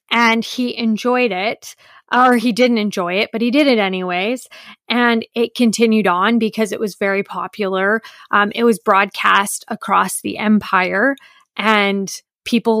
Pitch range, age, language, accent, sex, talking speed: 200-235 Hz, 20-39, English, American, female, 150 wpm